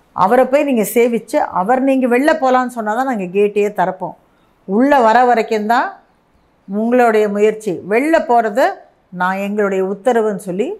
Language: Tamil